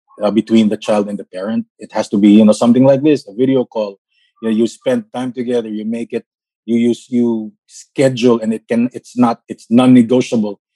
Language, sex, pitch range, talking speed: English, male, 110-130 Hz, 210 wpm